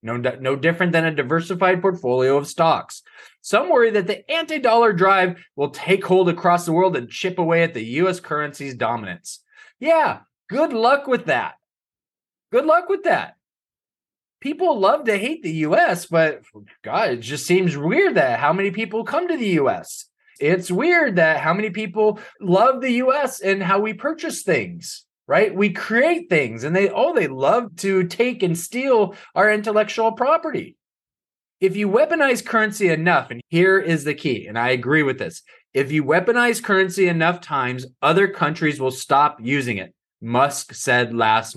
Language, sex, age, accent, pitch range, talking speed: English, male, 20-39, American, 145-215 Hz, 170 wpm